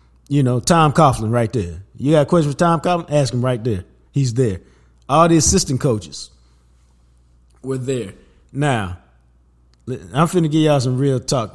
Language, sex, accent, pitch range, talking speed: English, male, American, 105-155 Hz, 170 wpm